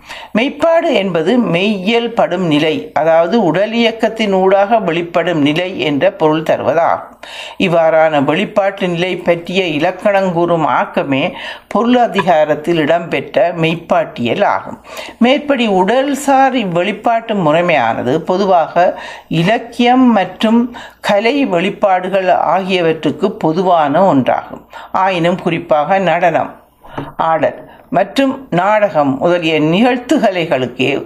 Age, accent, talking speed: 60-79, native, 85 wpm